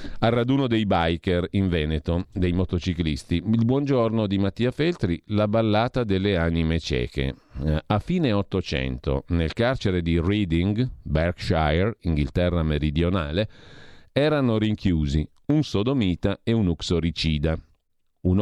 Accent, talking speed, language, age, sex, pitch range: native, 115 wpm, Italian, 40-59, male, 80-115 Hz